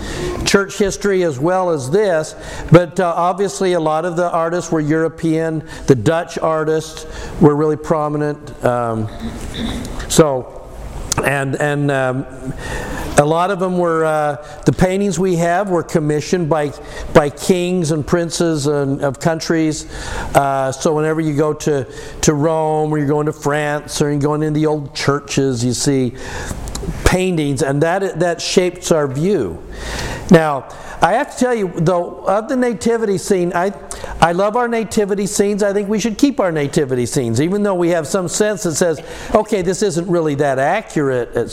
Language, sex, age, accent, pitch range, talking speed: English, male, 50-69, American, 150-185 Hz, 170 wpm